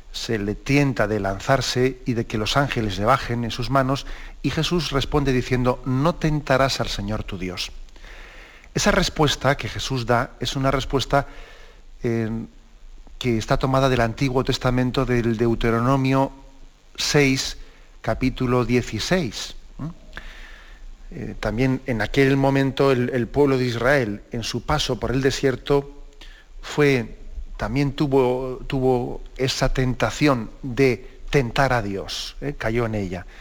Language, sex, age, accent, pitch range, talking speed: Spanish, male, 50-69, Spanish, 115-140 Hz, 135 wpm